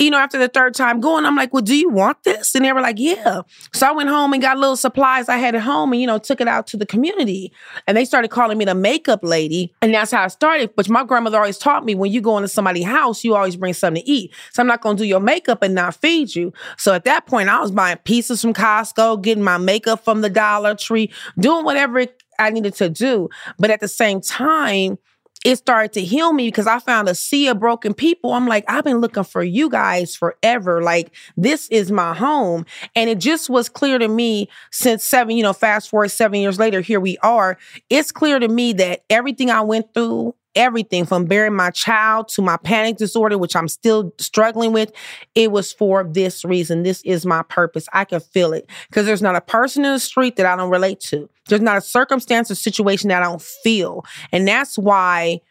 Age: 30-49